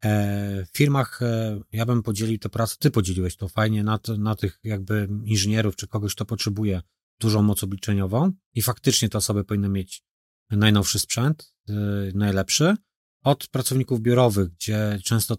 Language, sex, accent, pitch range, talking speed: Polish, male, native, 100-115 Hz, 150 wpm